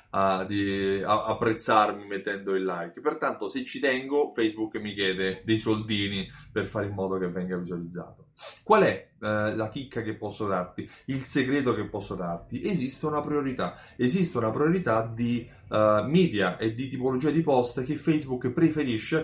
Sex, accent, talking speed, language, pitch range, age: male, native, 170 wpm, Italian, 110-145 Hz, 20-39